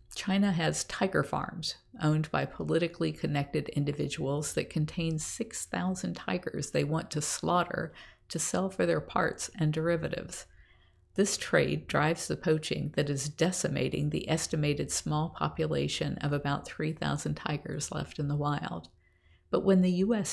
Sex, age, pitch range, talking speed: female, 50-69, 145-170 Hz, 140 wpm